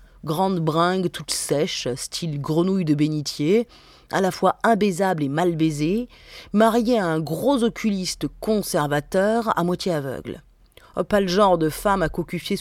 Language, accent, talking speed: French, French, 150 wpm